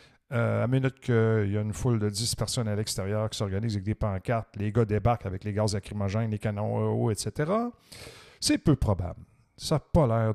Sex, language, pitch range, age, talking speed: male, French, 115-180 Hz, 50-69, 215 wpm